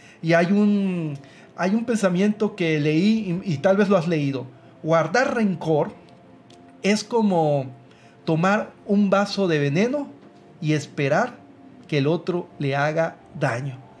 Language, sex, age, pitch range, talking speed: Spanish, male, 40-59, 155-215 Hz, 135 wpm